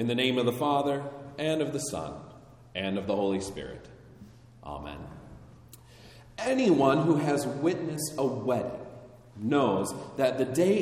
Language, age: English, 40-59